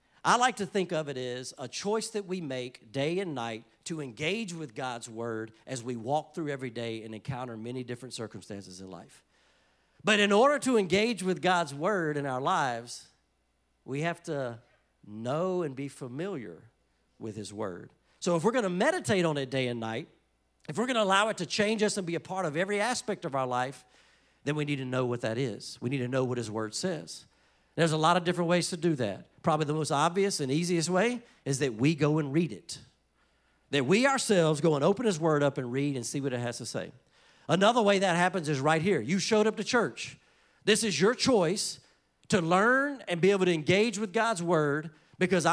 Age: 50-69